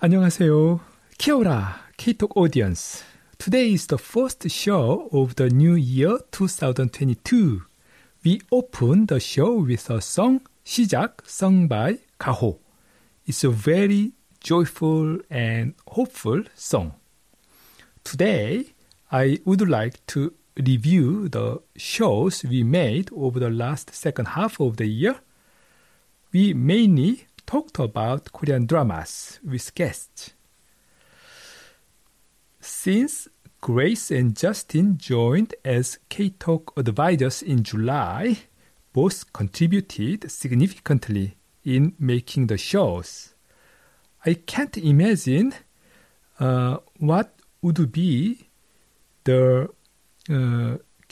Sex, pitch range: male, 130-195 Hz